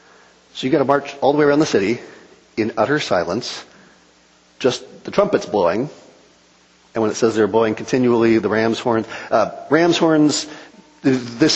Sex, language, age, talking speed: male, English, 40-59, 165 wpm